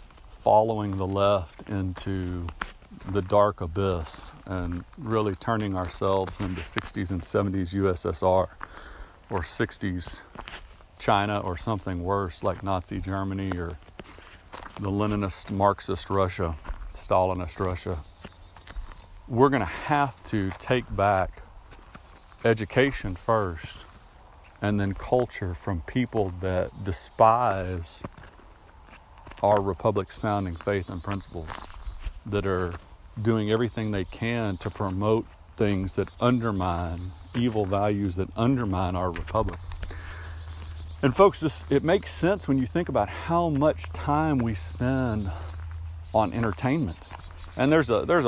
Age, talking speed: 40-59, 115 wpm